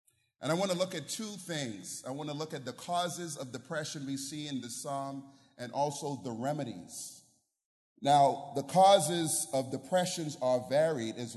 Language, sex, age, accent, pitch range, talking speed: English, male, 30-49, American, 130-165 Hz, 180 wpm